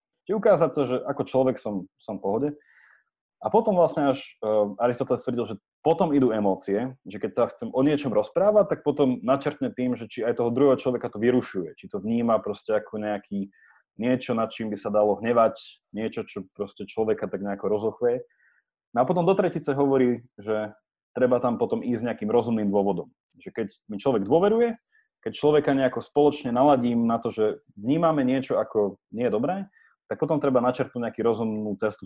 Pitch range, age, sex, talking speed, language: 110-145 Hz, 30-49, male, 185 wpm, Slovak